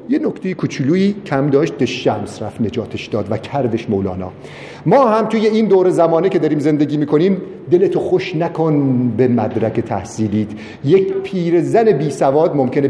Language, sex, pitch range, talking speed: Persian, male, 115-155 Hz, 160 wpm